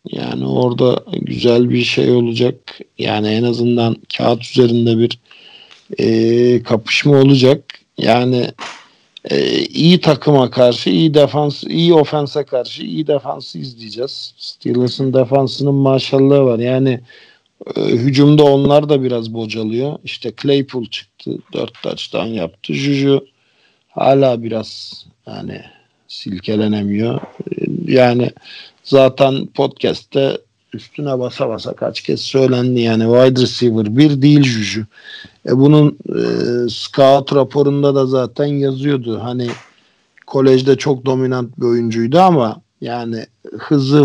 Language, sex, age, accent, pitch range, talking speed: Turkish, male, 50-69, native, 120-140 Hz, 115 wpm